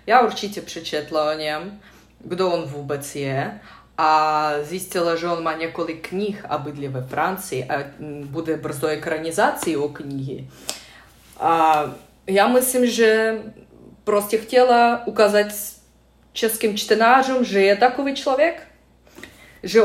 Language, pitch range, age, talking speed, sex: Czech, 160-220 Hz, 20-39, 120 wpm, female